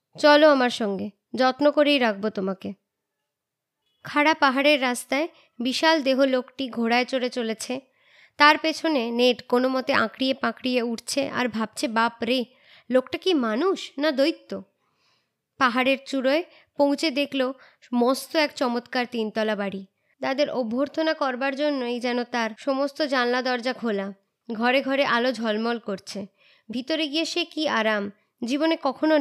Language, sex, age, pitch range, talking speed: Bengali, male, 20-39, 230-285 Hz, 130 wpm